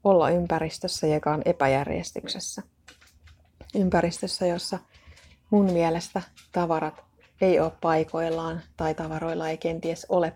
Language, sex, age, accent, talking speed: Finnish, female, 30-49, native, 105 wpm